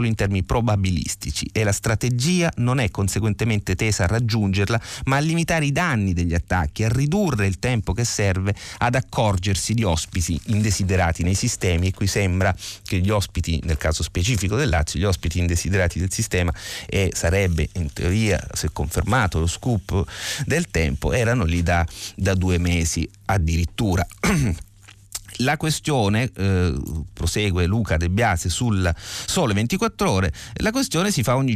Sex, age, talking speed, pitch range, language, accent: male, 30-49, 155 wpm, 90-115 Hz, Italian, native